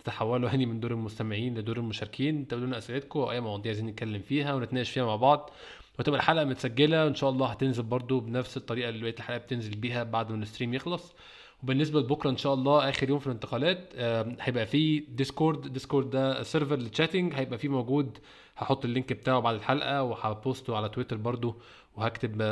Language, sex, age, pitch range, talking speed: Arabic, male, 20-39, 115-140 Hz, 185 wpm